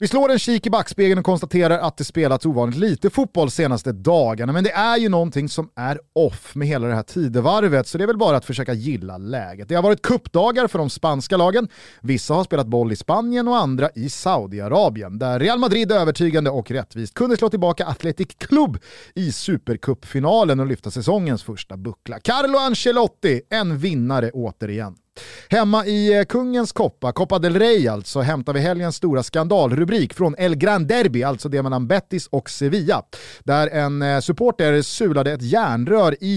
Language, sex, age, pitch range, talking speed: Swedish, male, 30-49, 135-205 Hz, 180 wpm